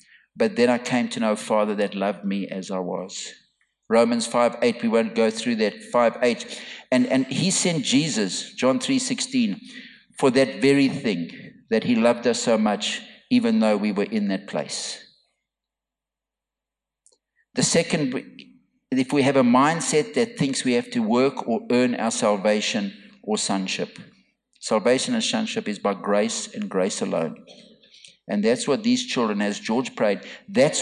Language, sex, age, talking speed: English, male, 50-69, 165 wpm